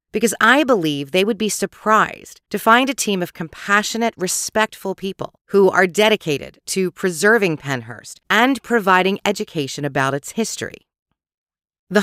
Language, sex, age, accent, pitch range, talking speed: English, female, 40-59, American, 155-205 Hz, 140 wpm